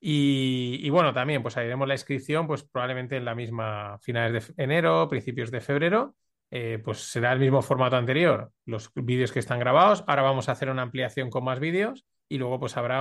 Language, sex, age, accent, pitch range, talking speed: Spanish, male, 20-39, Spanish, 120-150 Hz, 210 wpm